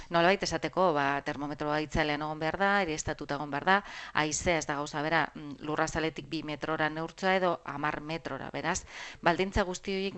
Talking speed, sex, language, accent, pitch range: 170 wpm, female, Spanish, Spanish, 150-180 Hz